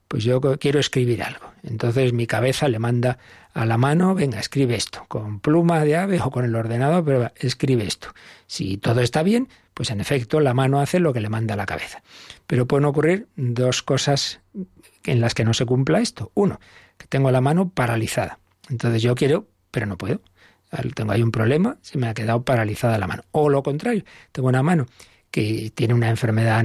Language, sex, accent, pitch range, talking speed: Spanish, male, Spanish, 115-155 Hz, 200 wpm